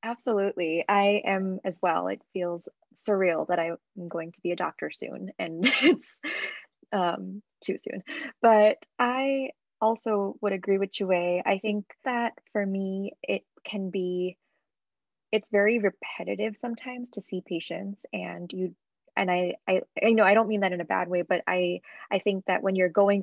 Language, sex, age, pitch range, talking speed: English, female, 20-39, 180-205 Hz, 170 wpm